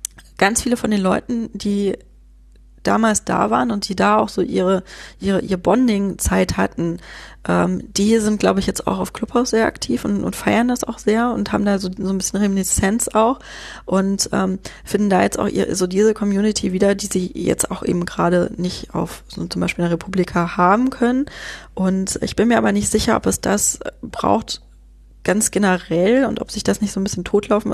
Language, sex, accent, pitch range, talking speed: German, female, German, 180-210 Hz, 200 wpm